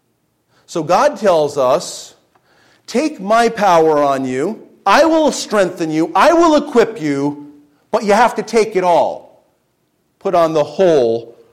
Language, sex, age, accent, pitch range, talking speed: English, male, 40-59, American, 130-170 Hz, 145 wpm